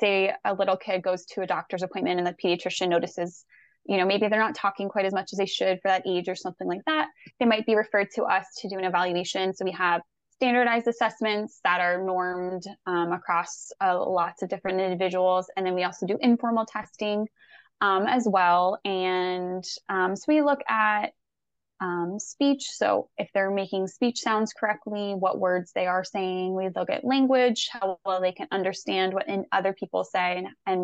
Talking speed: 200 wpm